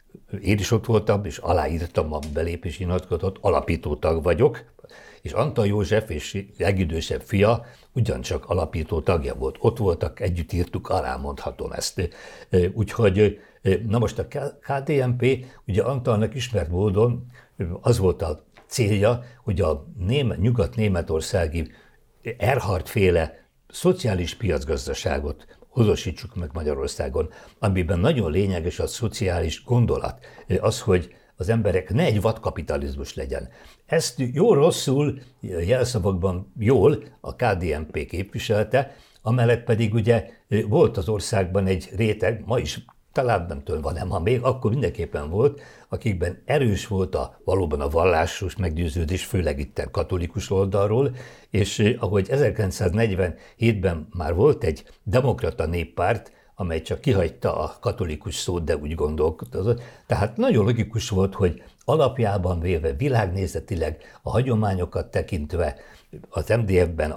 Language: English